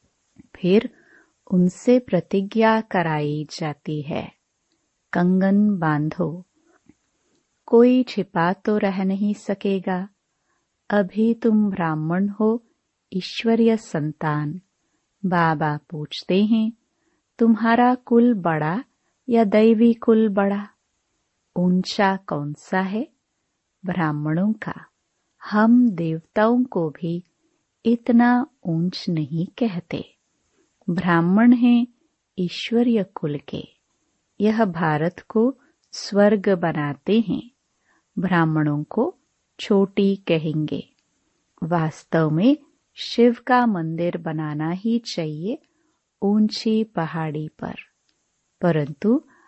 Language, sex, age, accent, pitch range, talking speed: Hindi, female, 30-49, native, 165-230 Hz, 85 wpm